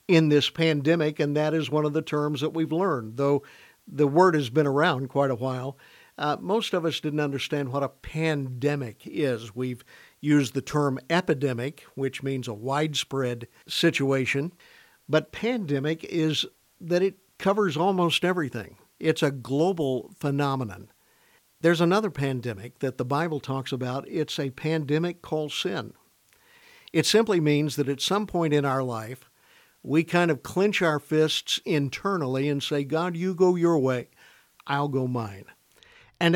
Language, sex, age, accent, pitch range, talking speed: English, male, 50-69, American, 135-160 Hz, 155 wpm